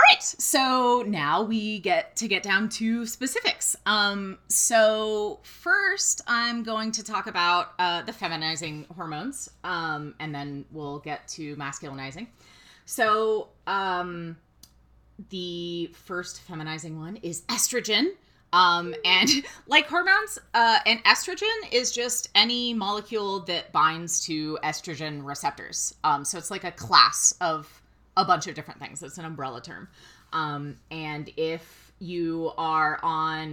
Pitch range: 160-240 Hz